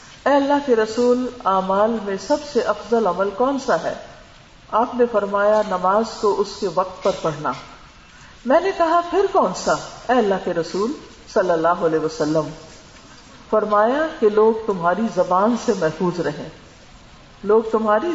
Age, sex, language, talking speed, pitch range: 50-69, female, Urdu, 155 wpm, 185-255 Hz